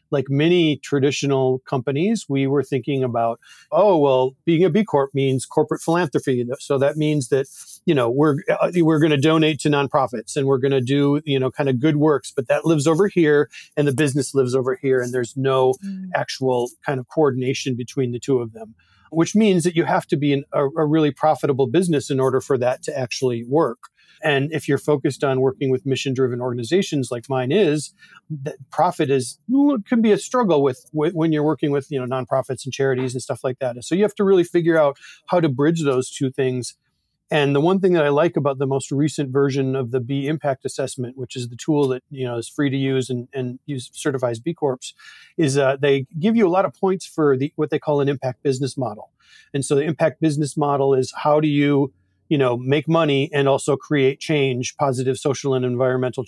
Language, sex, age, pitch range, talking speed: English, male, 40-59, 130-155 Hz, 220 wpm